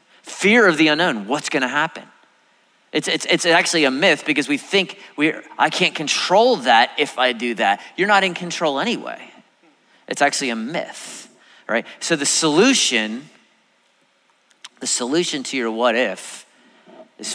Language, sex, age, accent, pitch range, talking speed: English, male, 30-49, American, 125-165 Hz, 160 wpm